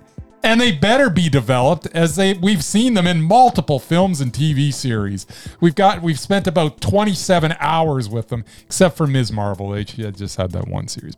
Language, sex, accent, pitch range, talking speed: English, male, American, 130-190 Hz, 200 wpm